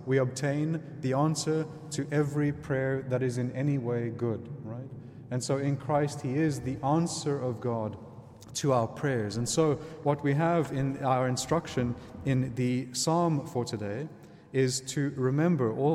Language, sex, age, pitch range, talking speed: English, male, 30-49, 125-150 Hz, 160 wpm